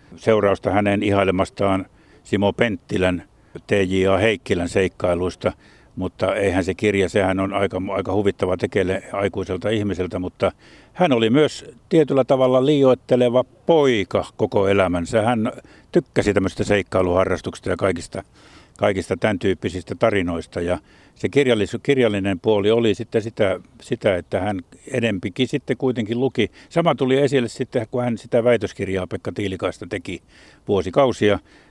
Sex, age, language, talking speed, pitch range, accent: male, 60-79, Finnish, 125 wpm, 95-115 Hz, native